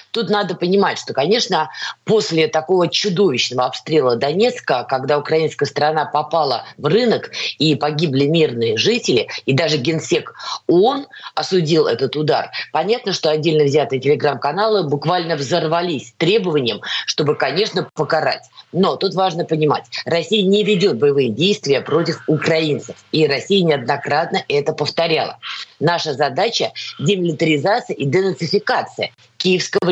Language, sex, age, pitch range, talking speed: Russian, female, 20-39, 155-210 Hz, 120 wpm